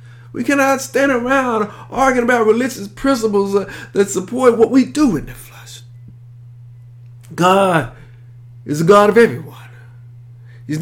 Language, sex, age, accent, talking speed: English, male, 50-69, American, 130 wpm